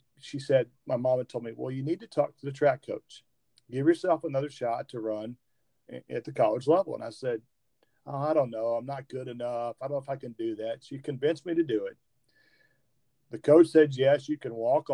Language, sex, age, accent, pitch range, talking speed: English, male, 40-59, American, 115-145 Hz, 230 wpm